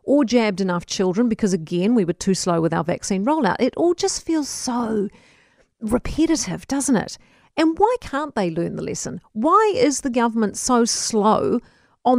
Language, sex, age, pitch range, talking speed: English, female, 40-59, 200-265 Hz, 175 wpm